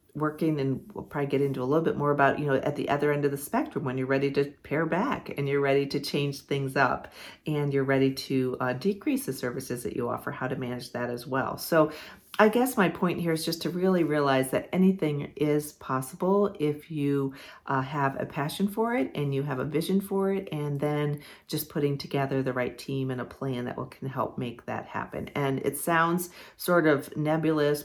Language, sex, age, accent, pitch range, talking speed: English, female, 40-59, American, 135-155 Hz, 220 wpm